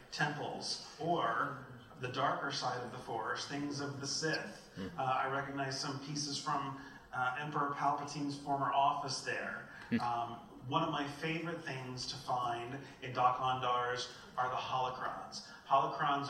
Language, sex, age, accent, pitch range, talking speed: English, male, 30-49, American, 130-145 Hz, 140 wpm